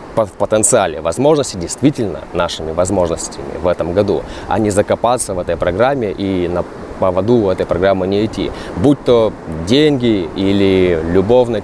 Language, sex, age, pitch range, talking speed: Russian, male, 20-39, 95-125 Hz, 140 wpm